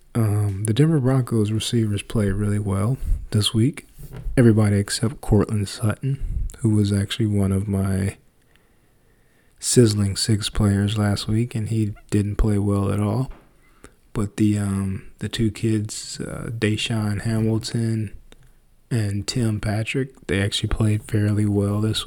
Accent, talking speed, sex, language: American, 135 wpm, male, English